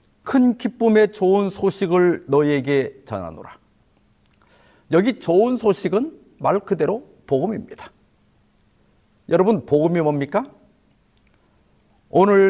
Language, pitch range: Korean, 155-205 Hz